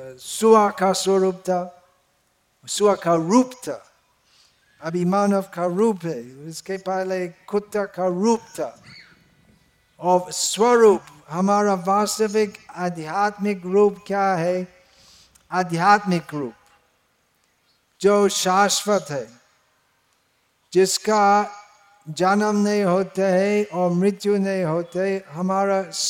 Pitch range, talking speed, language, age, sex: 180-210 Hz, 85 wpm, Hindi, 60-79, male